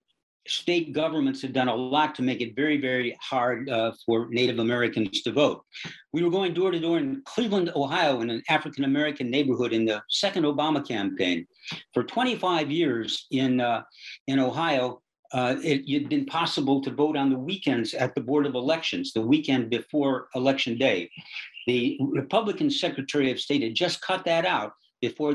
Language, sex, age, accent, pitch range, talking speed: English, male, 60-79, American, 130-165 Hz, 175 wpm